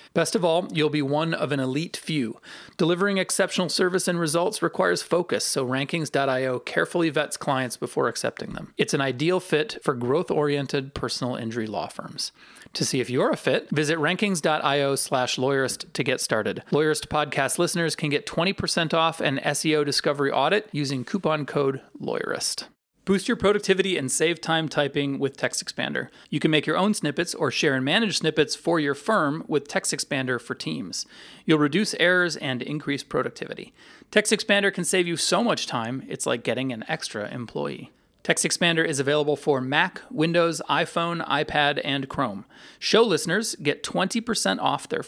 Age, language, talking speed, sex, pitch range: 30-49, English, 165 wpm, male, 140-175 Hz